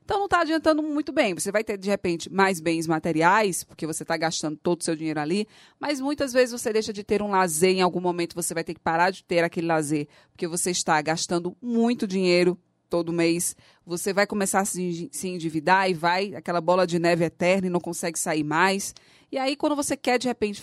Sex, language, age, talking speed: female, Portuguese, 20-39, 225 wpm